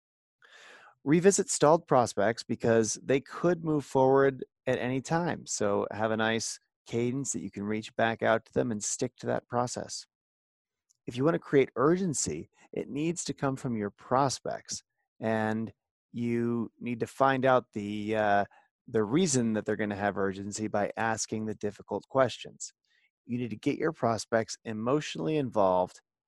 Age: 30-49